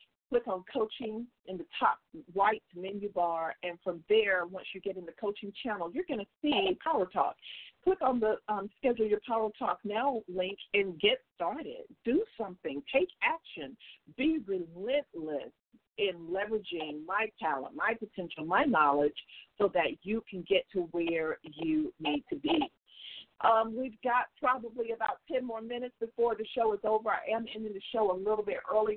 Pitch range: 185-240 Hz